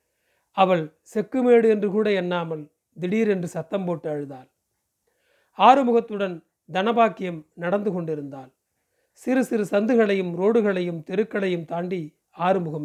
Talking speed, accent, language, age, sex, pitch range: 100 wpm, native, Tamil, 40-59, male, 170-225 Hz